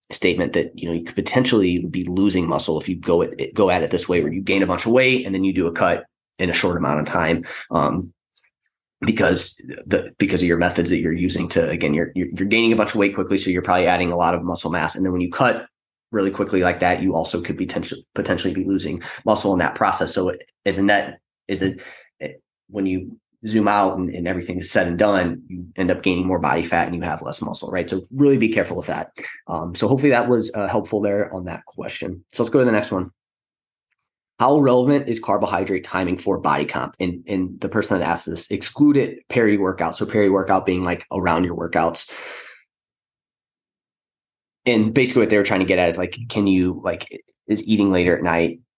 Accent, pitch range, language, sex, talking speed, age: American, 90-105 Hz, English, male, 230 wpm, 20-39